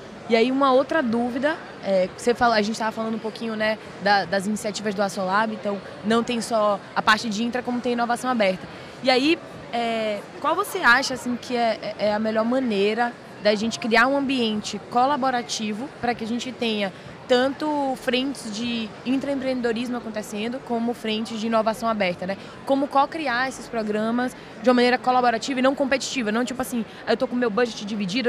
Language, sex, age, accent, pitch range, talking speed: Portuguese, female, 20-39, Brazilian, 210-255 Hz, 185 wpm